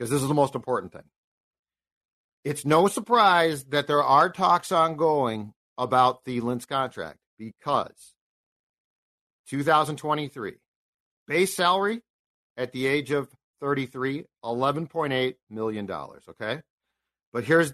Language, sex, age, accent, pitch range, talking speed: English, male, 50-69, American, 115-155 Hz, 110 wpm